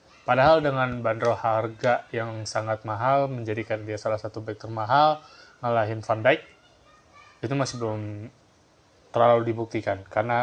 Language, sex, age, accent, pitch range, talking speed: Indonesian, male, 20-39, native, 110-140 Hz, 125 wpm